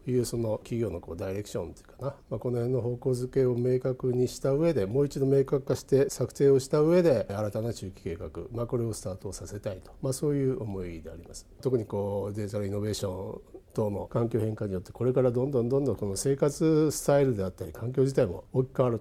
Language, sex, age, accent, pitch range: Japanese, male, 50-69, native, 100-135 Hz